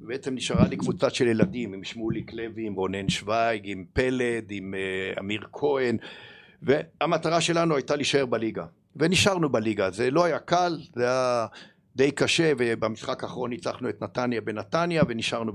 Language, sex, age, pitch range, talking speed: Hebrew, male, 60-79, 110-155 Hz, 150 wpm